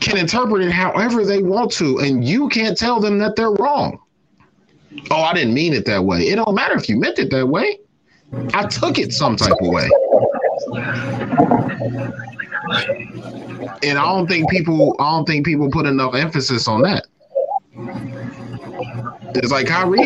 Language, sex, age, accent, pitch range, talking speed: English, male, 30-49, American, 125-185 Hz, 165 wpm